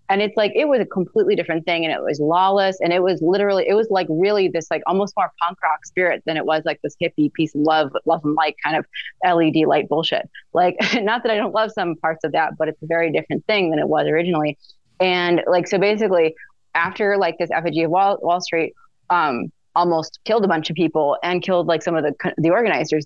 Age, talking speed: 20-39, 240 wpm